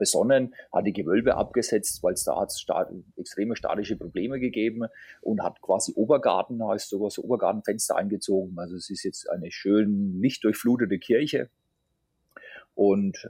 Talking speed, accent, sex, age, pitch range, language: 145 wpm, German, male, 40-59, 100-120 Hz, German